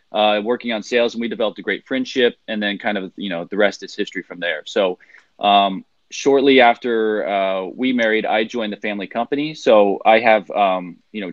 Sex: male